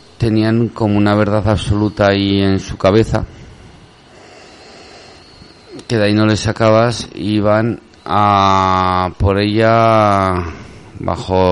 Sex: male